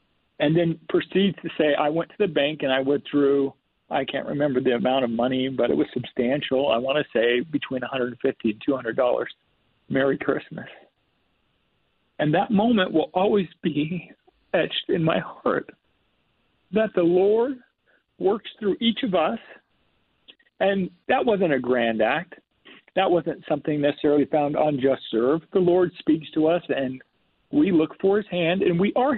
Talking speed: 165 wpm